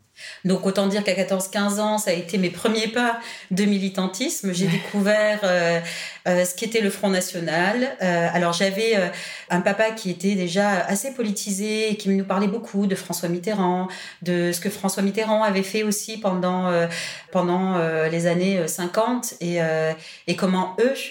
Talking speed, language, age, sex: 175 wpm, French, 30-49, female